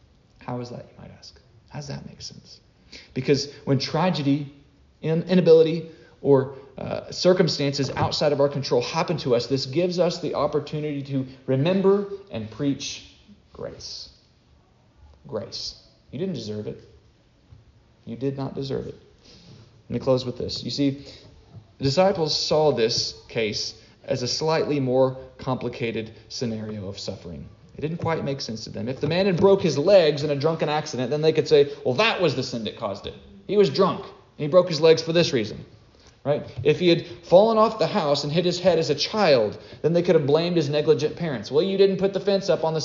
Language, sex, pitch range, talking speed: English, male, 130-170 Hz, 195 wpm